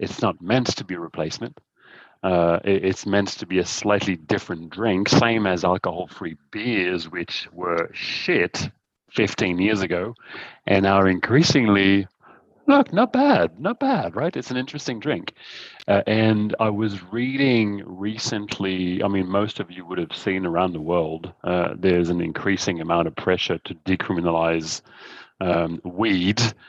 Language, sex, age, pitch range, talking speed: English, male, 40-59, 90-110 Hz, 150 wpm